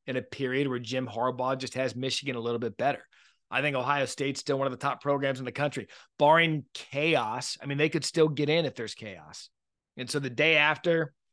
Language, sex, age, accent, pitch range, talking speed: English, male, 30-49, American, 120-145 Hz, 230 wpm